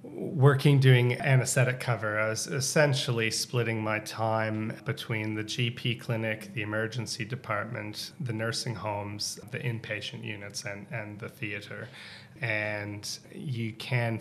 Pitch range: 105-130 Hz